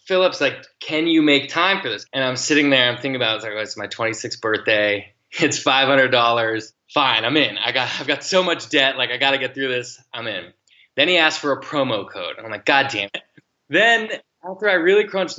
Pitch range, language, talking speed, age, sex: 120-155 Hz, English, 240 wpm, 20-39, male